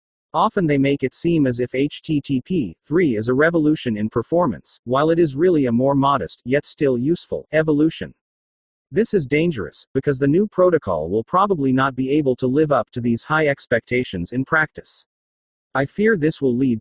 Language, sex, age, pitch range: English, male, 40-59, 120-160 Hz